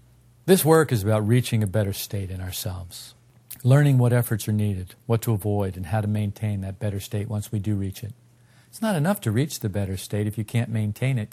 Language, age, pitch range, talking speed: English, 50-69, 115-140 Hz, 230 wpm